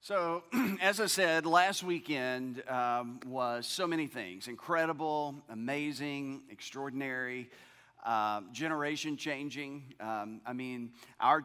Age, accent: 40-59, American